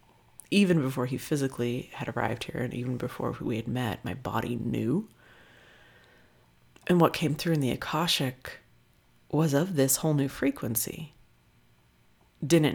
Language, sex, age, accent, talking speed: English, female, 40-59, American, 140 wpm